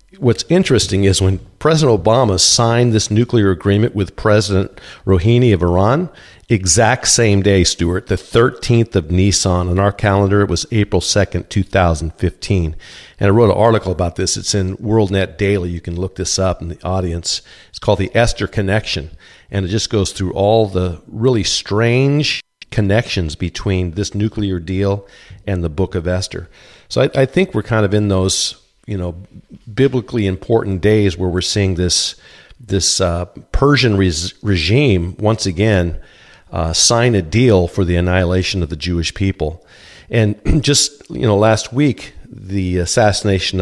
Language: English